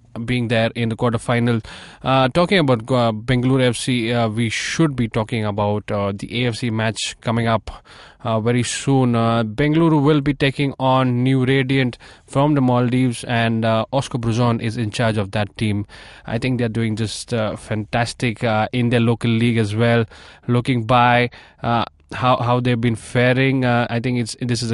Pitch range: 110-130 Hz